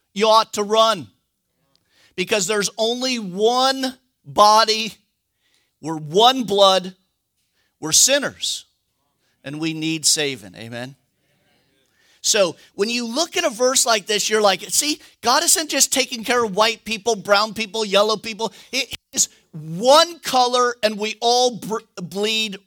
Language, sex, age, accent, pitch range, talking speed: English, male, 50-69, American, 160-240 Hz, 135 wpm